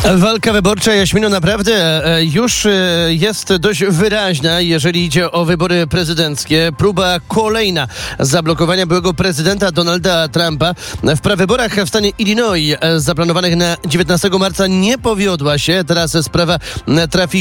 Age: 30-49